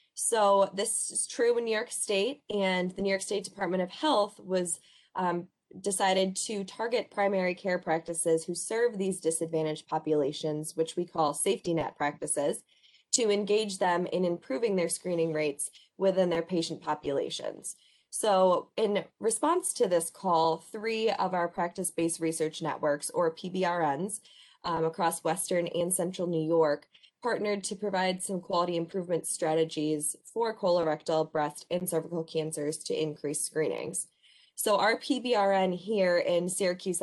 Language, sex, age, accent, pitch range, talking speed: English, female, 20-39, American, 160-200 Hz, 145 wpm